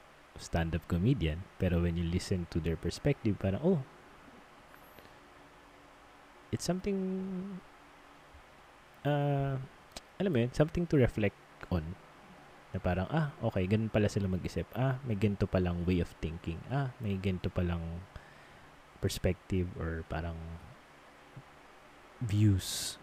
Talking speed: 115 wpm